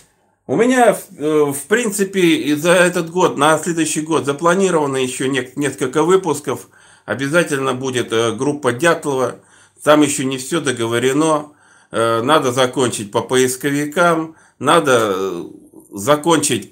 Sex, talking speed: male, 110 wpm